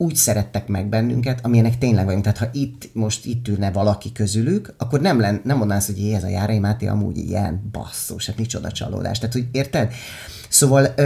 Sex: male